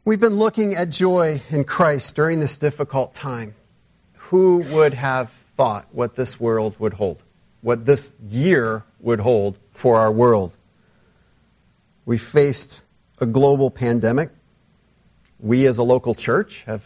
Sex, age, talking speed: male, 40-59, 140 wpm